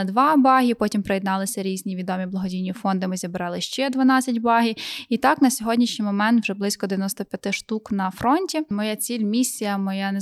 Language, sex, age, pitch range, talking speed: Ukrainian, female, 10-29, 200-230 Hz, 175 wpm